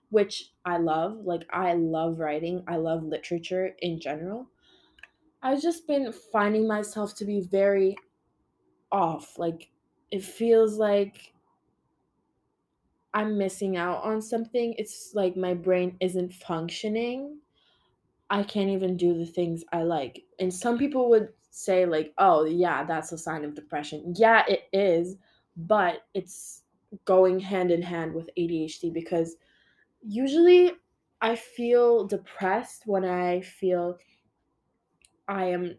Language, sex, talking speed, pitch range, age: English, female, 130 wpm, 175-225 Hz, 20-39